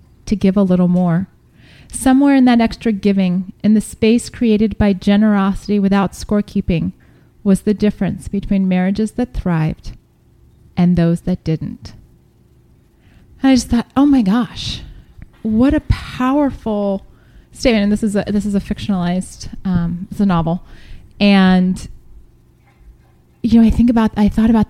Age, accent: 30-49, American